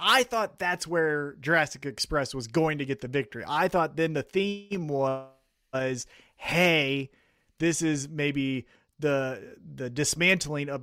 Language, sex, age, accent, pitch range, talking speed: English, male, 30-49, American, 135-180 Hz, 150 wpm